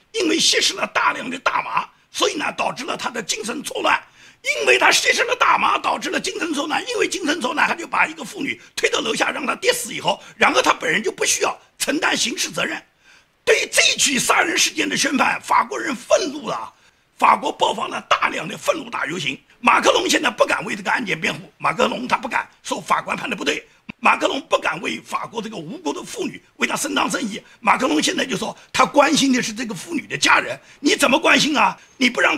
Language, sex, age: Chinese, male, 50-69